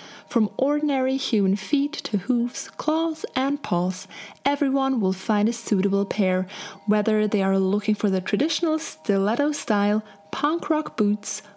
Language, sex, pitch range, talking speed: English, female, 195-250 Hz, 140 wpm